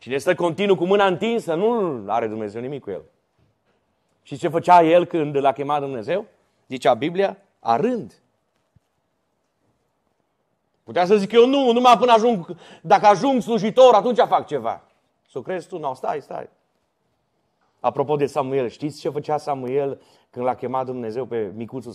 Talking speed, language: 160 wpm, Romanian